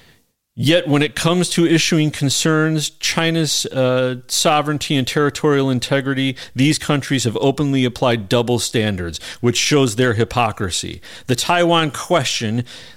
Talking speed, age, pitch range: 125 wpm, 40-59, 110-145 Hz